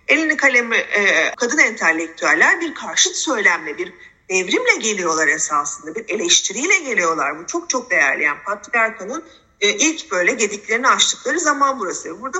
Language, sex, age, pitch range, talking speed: Turkish, female, 40-59, 180-280 Hz, 130 wpm